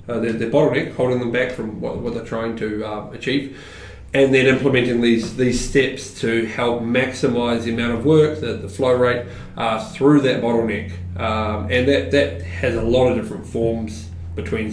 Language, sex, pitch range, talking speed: English, male, 105-125 Hz, 190 wpm